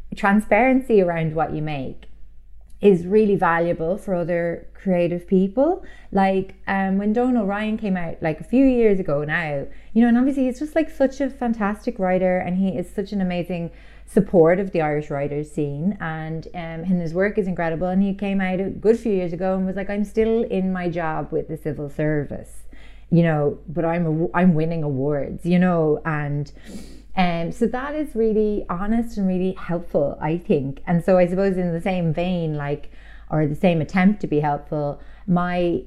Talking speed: 190 wpm